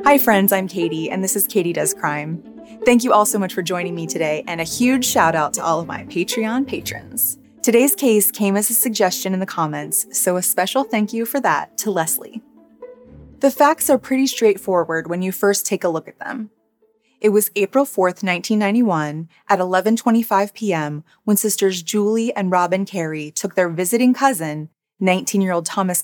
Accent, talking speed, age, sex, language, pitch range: American, 185 wpm, 20-39, female, English, 175-220 Hz